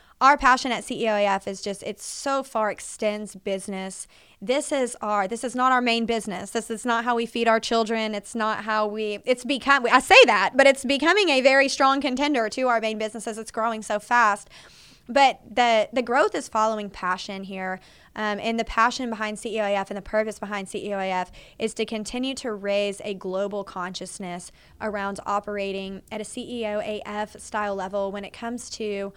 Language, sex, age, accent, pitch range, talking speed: English, female, 20-39, American, 200-235 Hz, 185 wpm